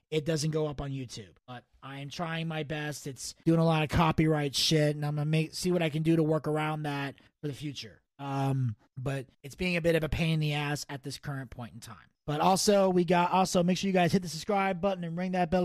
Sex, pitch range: male, 145-185 Hz